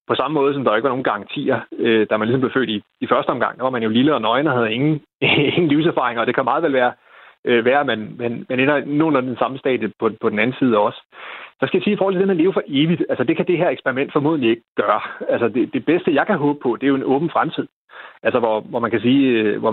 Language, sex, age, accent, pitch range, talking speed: Danish, male, 30-49, native, 125-155 Hz, 275 wpm